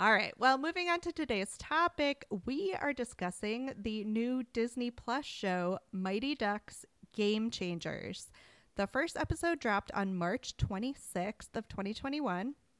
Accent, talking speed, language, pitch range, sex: American, 135 wpm, English, 190-255 Hz, female